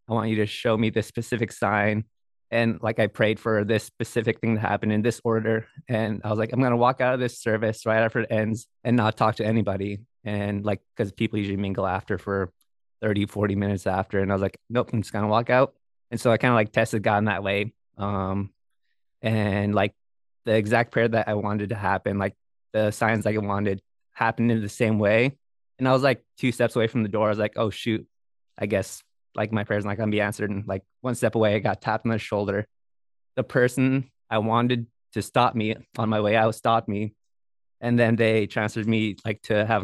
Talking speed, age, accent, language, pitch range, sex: 235 wpm, 20-39, American, English, 105-120 Hz, male